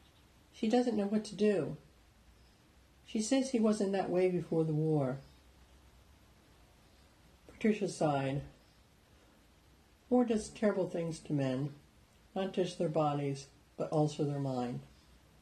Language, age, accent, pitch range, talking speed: English, 60-79, American, 130-175 Hz, 120 wpm